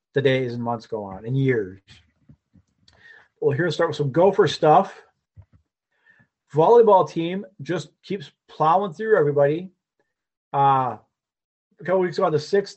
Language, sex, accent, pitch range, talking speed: English, male, American, 130-165 Hz, 145 wpm